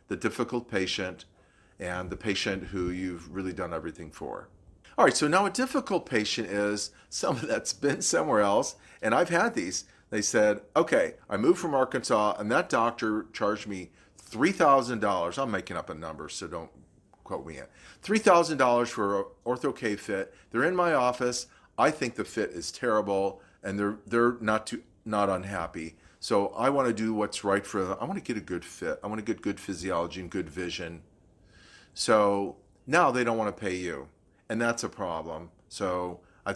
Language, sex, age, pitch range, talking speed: English, male, 40-59, 95-115 Hz, 185 wpm